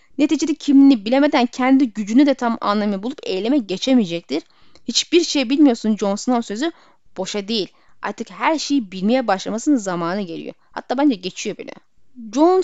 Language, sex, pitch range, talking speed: Turkish, female, 225-300 Hz, 145 wpm